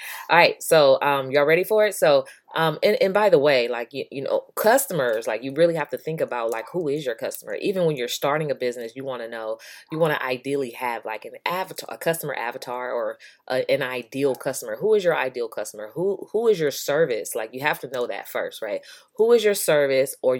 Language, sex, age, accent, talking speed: English, female, 20-39, American, 240 wpm